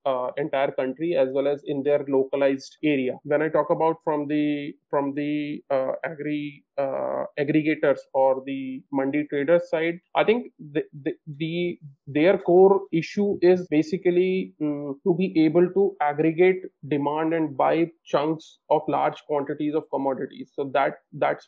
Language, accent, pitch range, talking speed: English, Indian, 145-170 Hz, 155 wpm